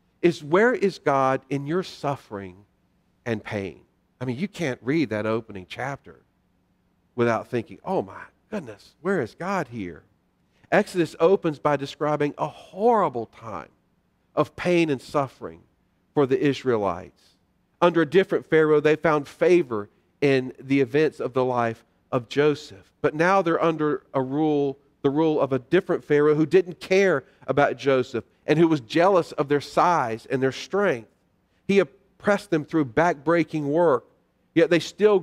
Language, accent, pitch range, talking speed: English, American, 120-165 Hz, 155 wpm